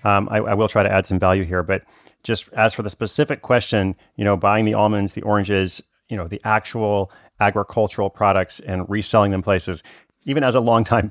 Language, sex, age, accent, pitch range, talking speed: English, male, 30-49, American, 95-115 Hz, 205 wpm